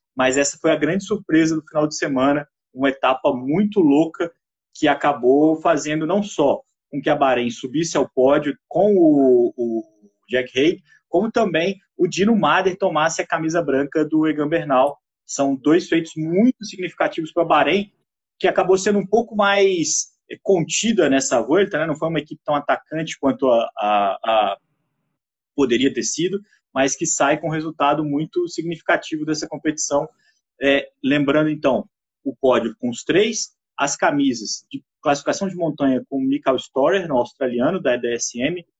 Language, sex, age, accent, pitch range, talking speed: Portuguese, male, 30-49, Brazilian, 135-175 Hz, 160 wpm